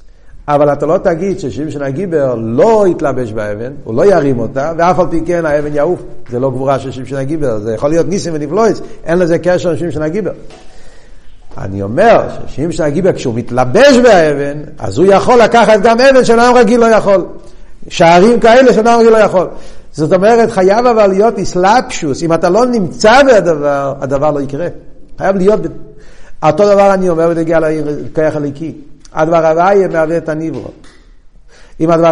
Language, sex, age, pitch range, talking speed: Hebrew, male, 50-69, 145-200 Hz, 165 wpm